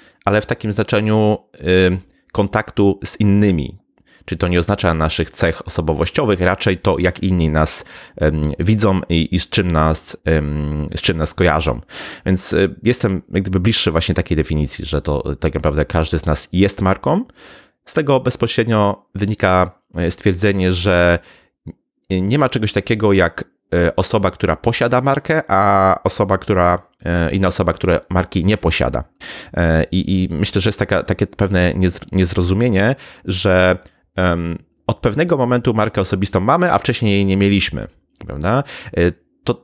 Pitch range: 85-105 Hz